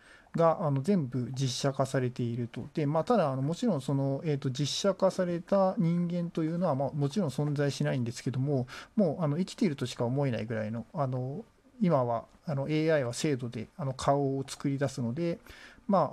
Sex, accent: male, native